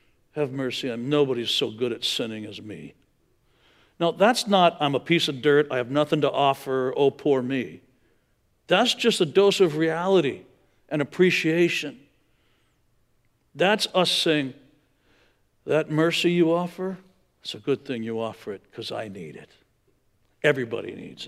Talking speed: 150 wpm